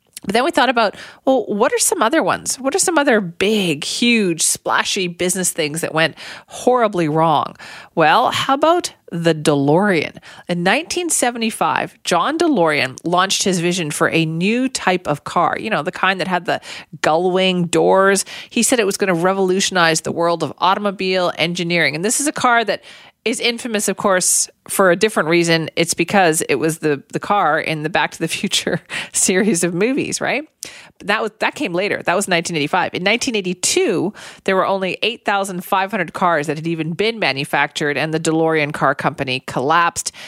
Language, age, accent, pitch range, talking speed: English, 40-59, American, 160-210 Hz, 180 wpm